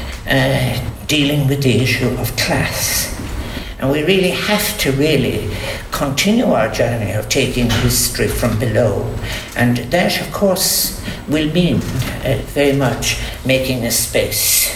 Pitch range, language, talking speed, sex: 115-155 Hz, English, 135 wpm, male